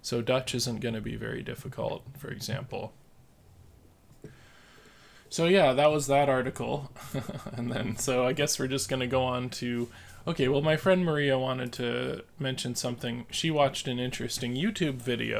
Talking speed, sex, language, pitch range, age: 170 wpm, male, English, 115-125 Hz, 20-39